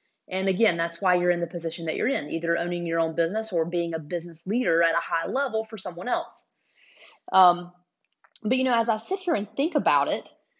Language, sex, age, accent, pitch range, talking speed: English, female, 30-49, American, 175-225 Hz, 225 wpm